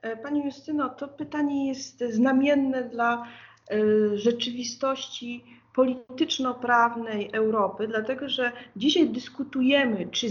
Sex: female